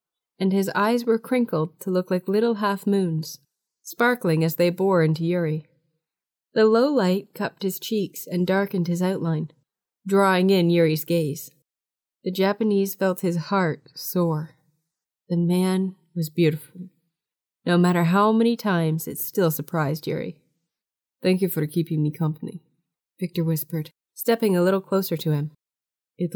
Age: 20-39